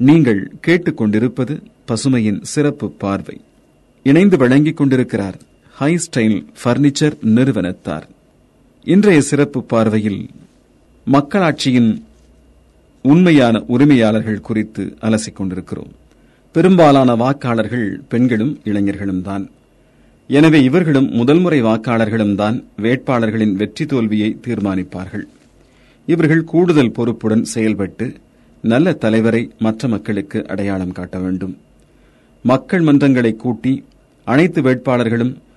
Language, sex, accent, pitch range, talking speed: Tamil, male, native, 105-140 Hz, 85 wpm